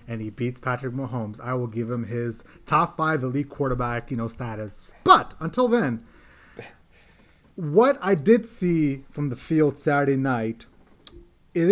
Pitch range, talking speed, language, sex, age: 130-175 Hz, 155 wpm, English, male, 30-49